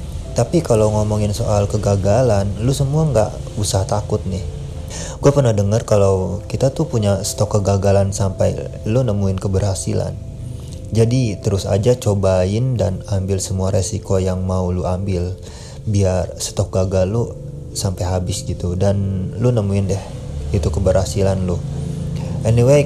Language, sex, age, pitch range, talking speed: Indonesian, male, 30-49, 95-110 Hz, 135 wpm